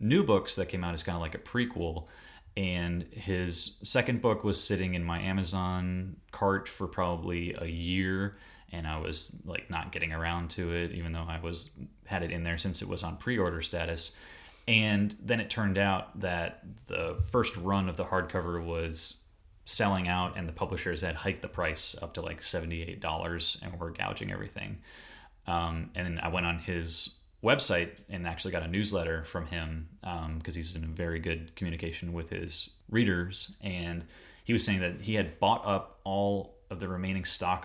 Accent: American